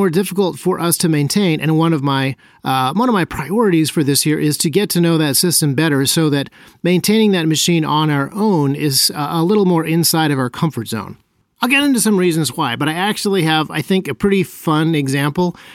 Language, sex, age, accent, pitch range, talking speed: English, male, 40-59, American, 150-190 Hz, 225 wpm